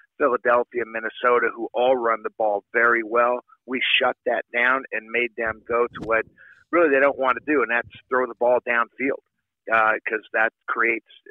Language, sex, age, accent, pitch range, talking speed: English, male, 50-69, American, 115-145 Hz, 185 wpm